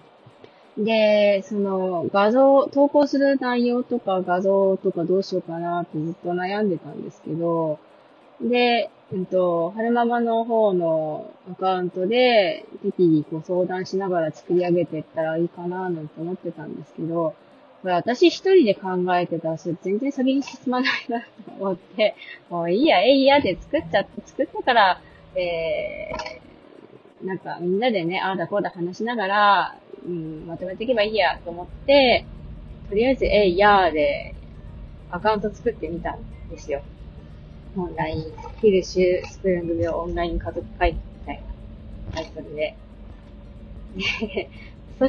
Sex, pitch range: female, 170-235 Hz